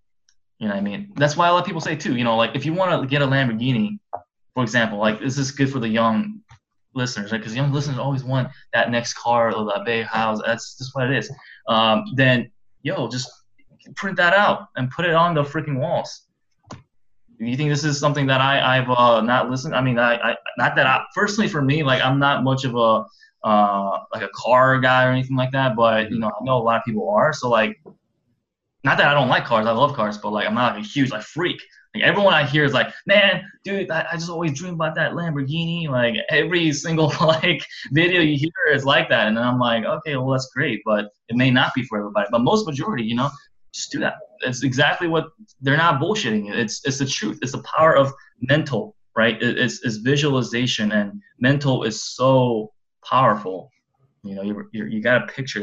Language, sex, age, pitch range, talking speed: English, male, 20-39, 115-155 Hz, 225 wpm